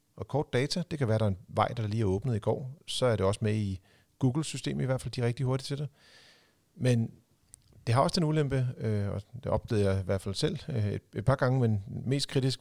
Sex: male